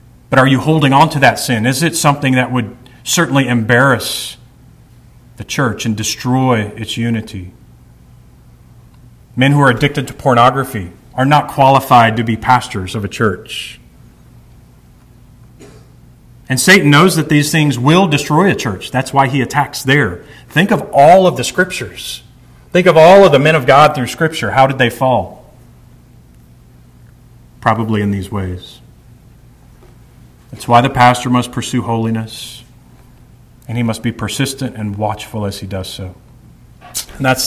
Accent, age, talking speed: American, 40-59, 150 wpm